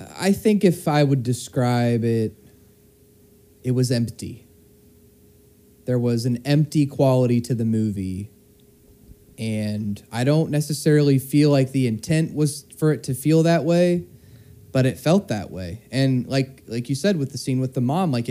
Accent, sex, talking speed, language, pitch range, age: American, male, 165 wpm, English, 115-155 Hz, 30-49